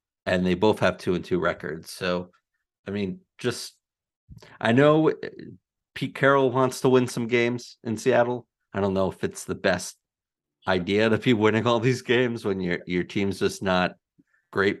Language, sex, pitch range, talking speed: English, male, 90-110 Hz, 180 wpm